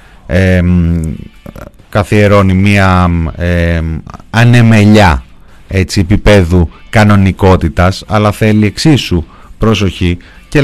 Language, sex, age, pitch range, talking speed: Greek, male, 30-49, 90-115 Hz, 75 wpm